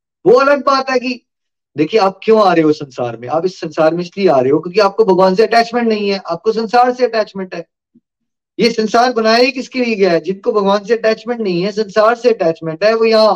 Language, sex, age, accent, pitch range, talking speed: Hindi, male, 20-39, native, 195-245 Hz, 240 wpm